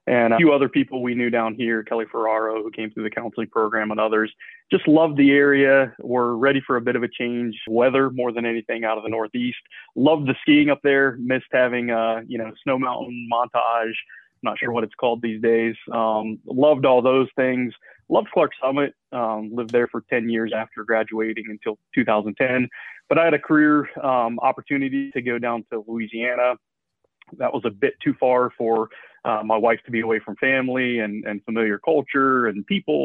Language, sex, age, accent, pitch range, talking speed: English, male, 20-39, American, 115-130 Hz, 195 wpm